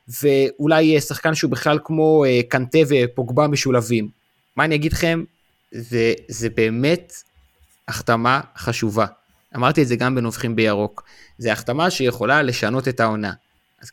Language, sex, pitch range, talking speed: Hebrew, male, 120-145 Hz, 140 wpm